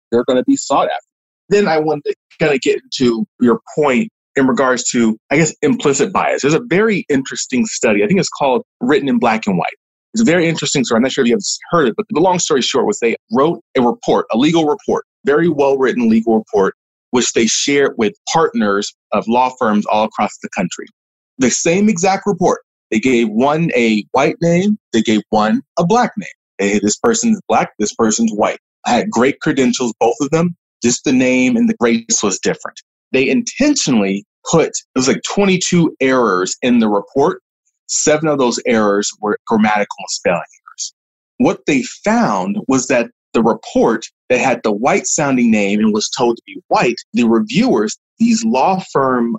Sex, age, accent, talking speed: male, 30-49, American, 195 wpm